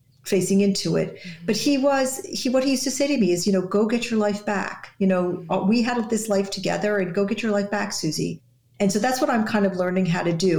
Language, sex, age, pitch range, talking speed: English, female, 50-69, 170-210 Hz, 265 wpm